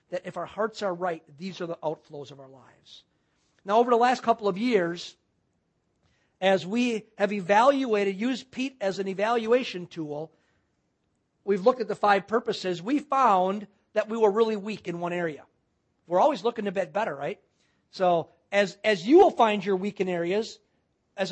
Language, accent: English, American